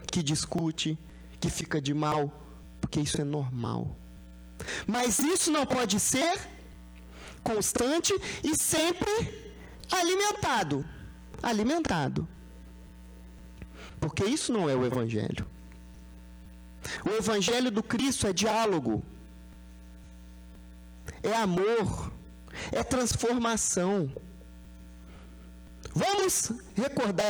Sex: male